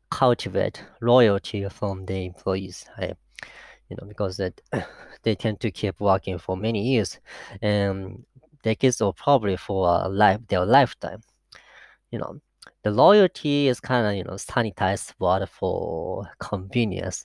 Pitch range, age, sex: 95-130 Hz, 20-39, female